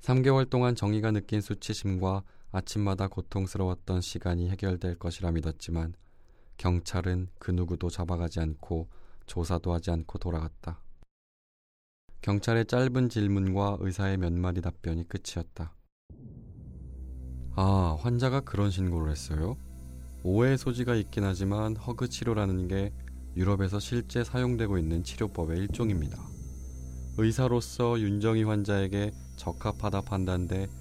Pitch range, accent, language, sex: 85-100 Hz, native, Korean, male